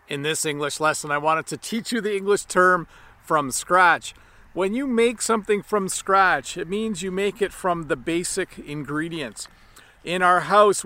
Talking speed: 175 wpm